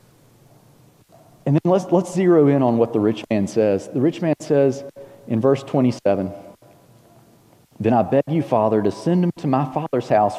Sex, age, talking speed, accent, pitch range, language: male, 40-59, 180 wpm, American, 110-150 Hz, English